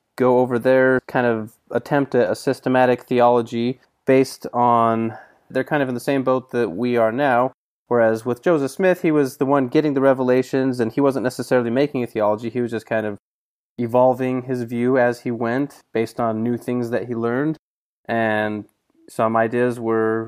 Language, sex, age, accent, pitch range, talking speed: English, male, 20-39, American, 115-135 Hz, 185 wpm